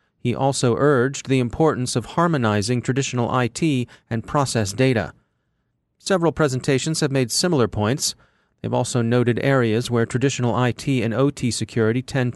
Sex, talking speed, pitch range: male, 140 wpm, 120-145 Hz